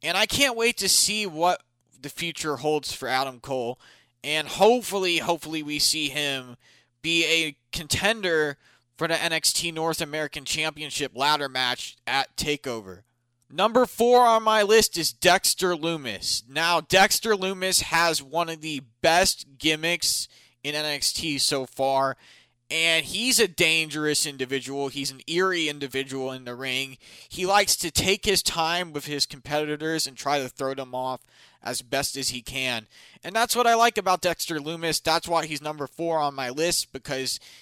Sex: male